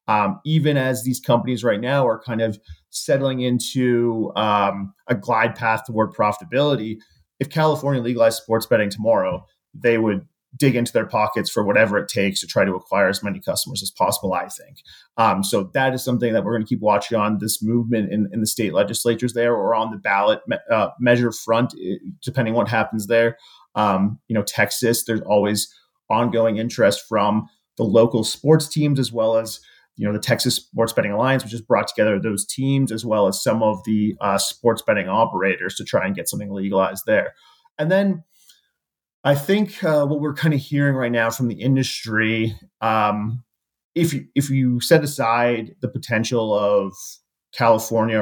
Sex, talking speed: male, 185 wpm